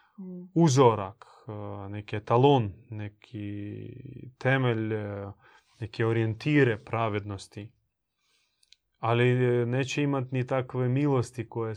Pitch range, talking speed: 110-125 Hz, 75 wpm